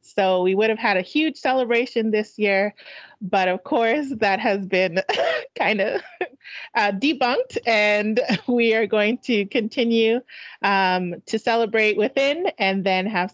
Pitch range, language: 170-205 Hz, English